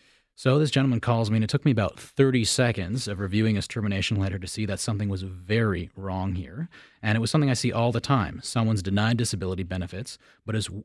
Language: English